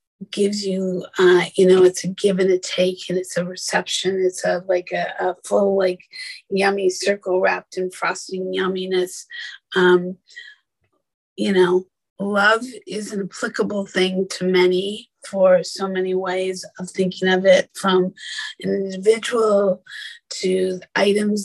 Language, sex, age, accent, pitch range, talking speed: English, female, 30-49, American, 180-190 Hz, 145 wpm